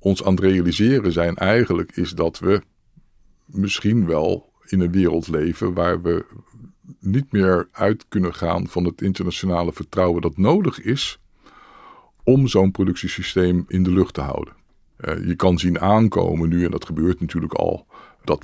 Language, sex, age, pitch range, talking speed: Dutch, male, 50-69, 85-105 Hz, 155 wpm